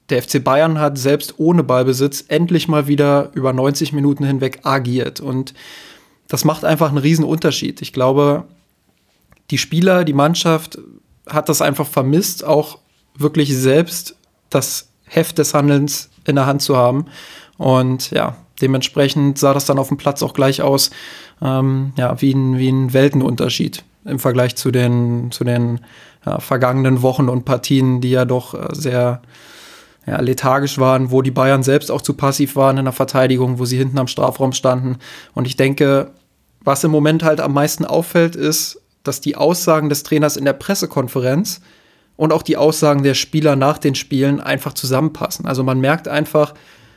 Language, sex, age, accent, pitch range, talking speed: German, male, 20-39, German, 130-150 Hz, 165 wpm